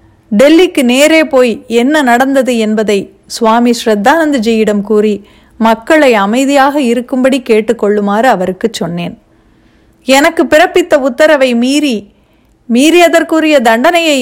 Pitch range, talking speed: 210-275 Hz, 90 wpm